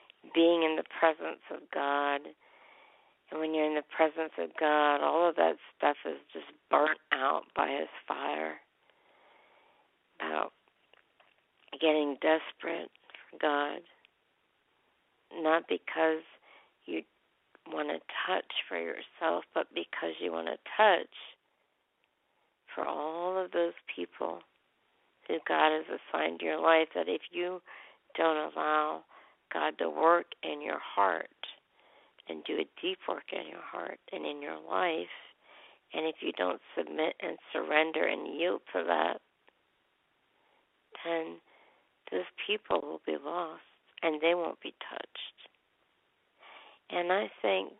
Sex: female